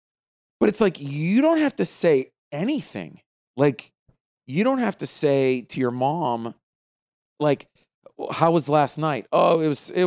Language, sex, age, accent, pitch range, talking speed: English, male, 30-49, American, 115-155 Hz, 160 wpm